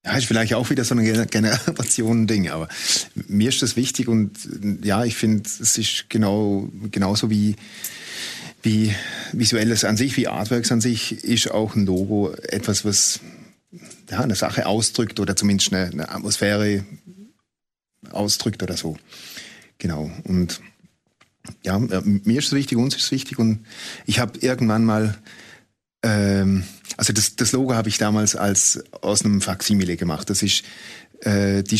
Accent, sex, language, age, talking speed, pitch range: German, male, German, 30-49, 155 wpm, 100-115 Hz